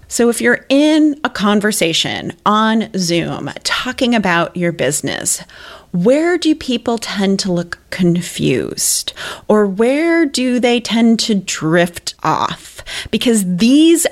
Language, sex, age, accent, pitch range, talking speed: English, female, 30-49, American, 175-240 Hz, 125 wpm